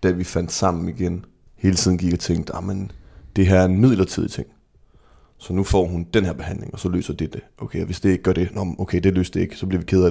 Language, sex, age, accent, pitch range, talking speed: Danish, male, 20-39, native, 90-105 Hz, 265 wpm